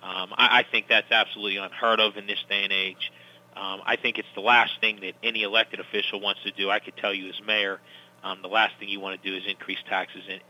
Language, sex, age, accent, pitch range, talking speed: English, male, 40-59, American, 100-110 Hz, 255 wpm